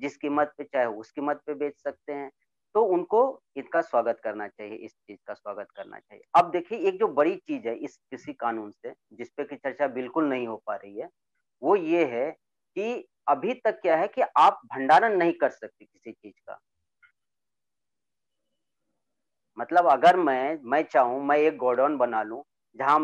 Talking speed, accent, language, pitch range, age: 180 wpm, native, Hindi, 135-180 Hz, 40-59